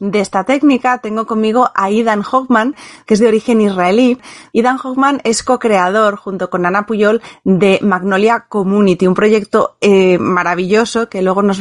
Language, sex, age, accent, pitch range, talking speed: Spanish, female, 30-49, Spanish, 195-230 Hz, 160 wpm